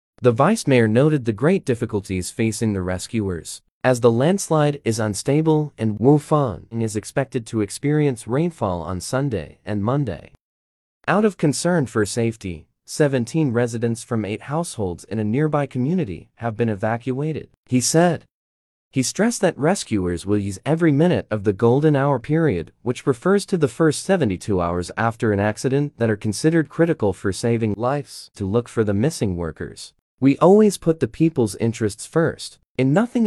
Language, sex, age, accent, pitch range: Chinese, male, 30-49, American, 105-155 Hz